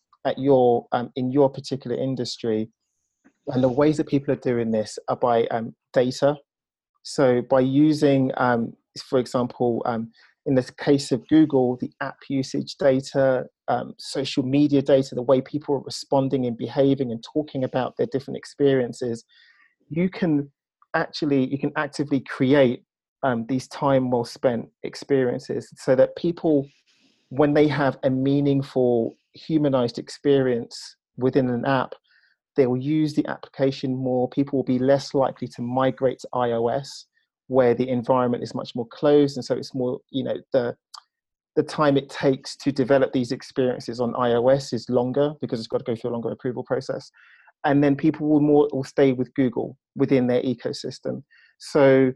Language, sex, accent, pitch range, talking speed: English, male, British, 125-145 Hz, 165 wpm